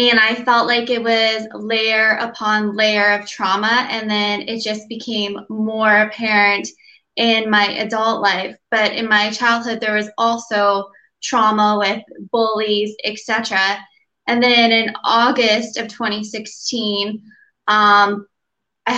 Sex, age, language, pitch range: female, 10-29, English, 200-220 Hz